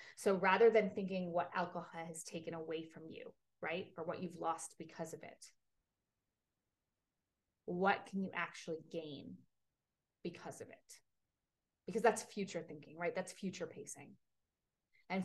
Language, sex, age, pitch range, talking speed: English, female, 30-49, 170-210 Hz, 140 wpm